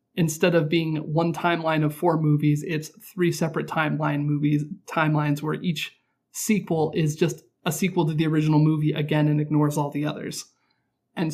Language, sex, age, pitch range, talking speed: English, male, 30-49, 150-175 Hz, 170 wpm